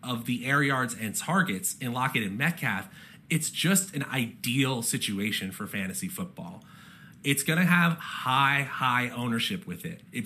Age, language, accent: 30-49, English, American